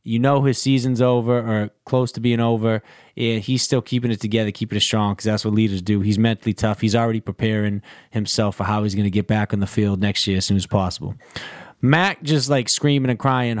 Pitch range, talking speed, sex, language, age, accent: 115-160 Hz, 230 wpm, male, English, 20-39, American